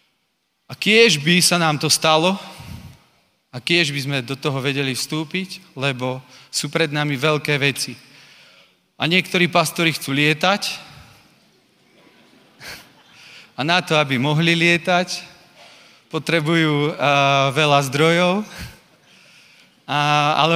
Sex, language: male, Slovak